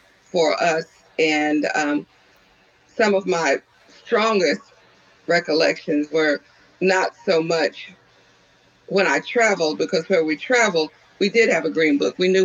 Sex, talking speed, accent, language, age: female, 135 wpm, American, English, 50-69